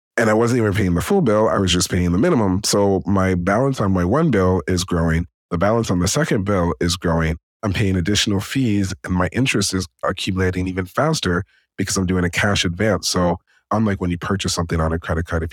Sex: male